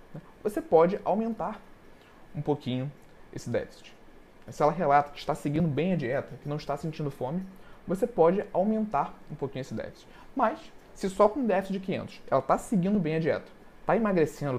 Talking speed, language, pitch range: 180 wpm, Portuguese, 150-195 Hz